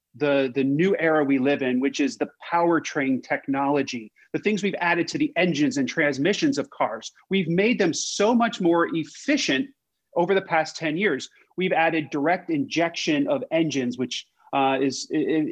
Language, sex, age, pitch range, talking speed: English, male, 30-49, 155-210 Hz, 175 wpm